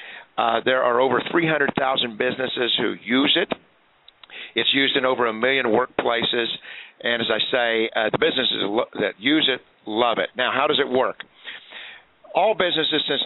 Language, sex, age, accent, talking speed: English, male, 50-69, American, 170 wpm